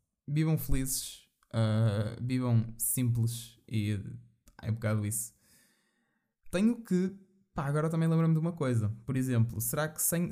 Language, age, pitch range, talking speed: Portuguese, 20-39, 115-155 Hz, 140 wpm